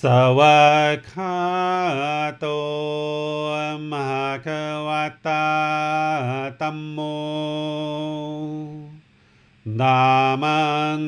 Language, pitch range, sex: English, 150-160 Hz, male